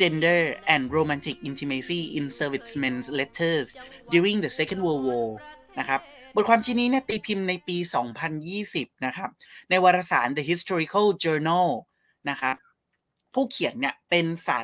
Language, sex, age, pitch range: Thai, male, 20-39, 145-195 Hz